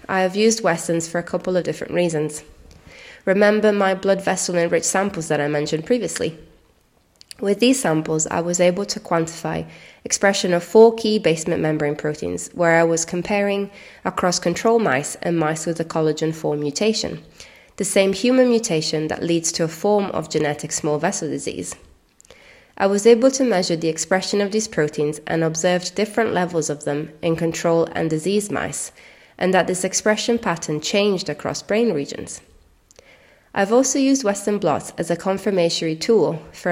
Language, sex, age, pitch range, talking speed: English, female, 20-39, 160-200 Hz, 170 wpm